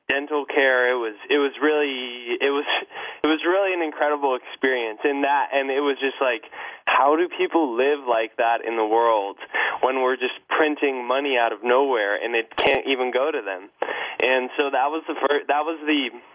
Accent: American